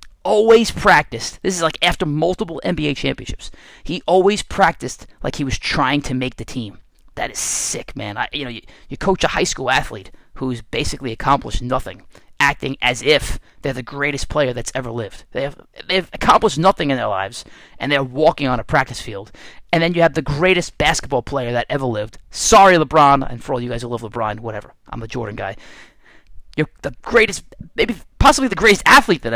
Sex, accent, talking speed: male, American, 200 wpm